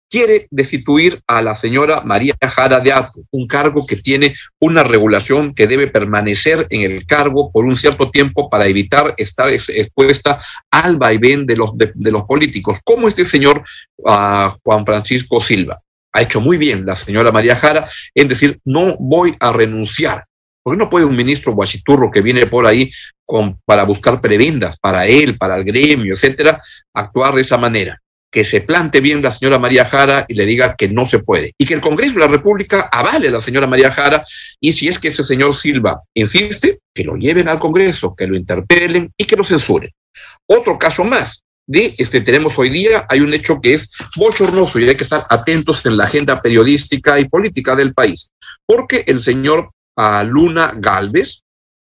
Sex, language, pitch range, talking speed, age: male, Spanish, 110-155 Hz, 185 wpm, 50-69